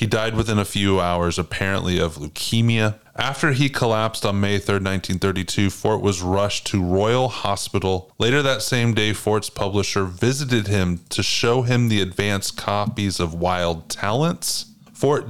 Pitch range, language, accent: 90-115 Hz, English, American